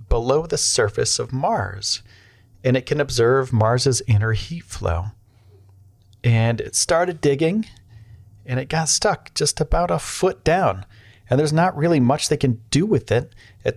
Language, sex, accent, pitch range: English, male, American, 100-140 Hz